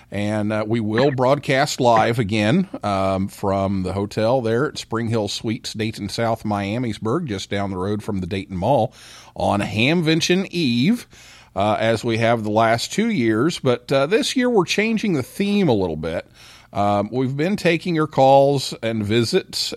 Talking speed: 175 wpm